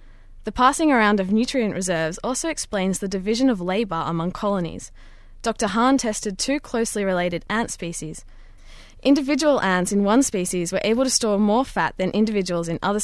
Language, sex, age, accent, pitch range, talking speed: English, female, 10-29, Australian, 175-240 Hz, 170 wpm